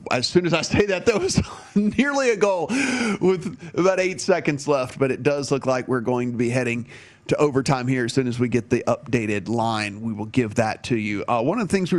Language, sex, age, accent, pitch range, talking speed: English, male, 30-49, American, 125-150 Hz, 245 wpm